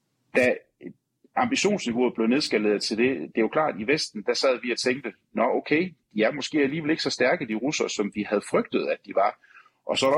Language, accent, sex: Danish, native, male